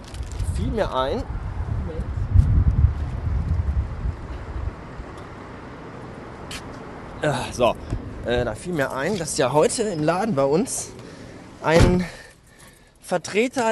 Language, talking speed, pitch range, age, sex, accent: German, 80 wpm, 105-150 Hz, 20-39, male, German